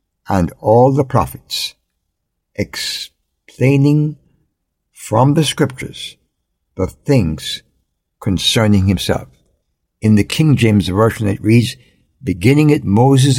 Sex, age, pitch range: male, 60-79, 100-135 Hz